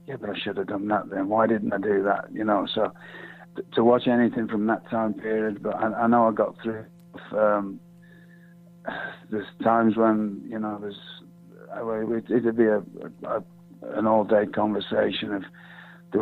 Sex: male